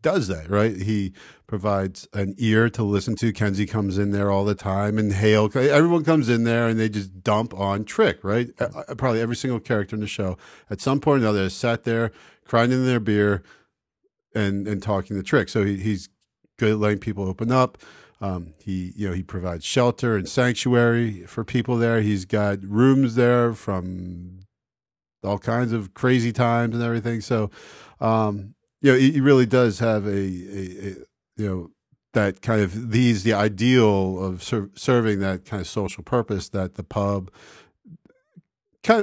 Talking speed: 180 wpm